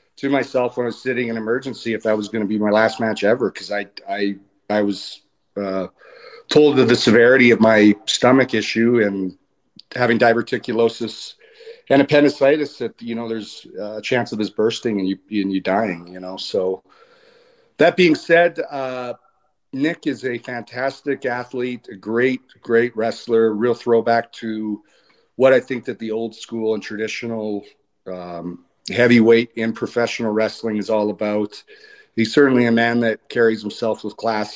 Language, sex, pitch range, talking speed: English, male, 110-130 Hz, 165 wpm